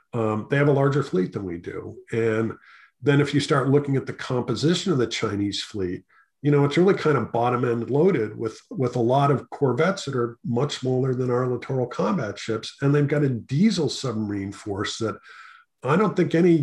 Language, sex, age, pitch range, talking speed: English, male, 50-69, 115-150 Hz, 210 wpm